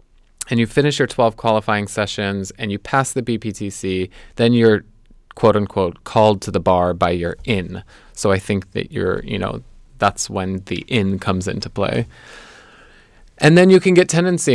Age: 20-39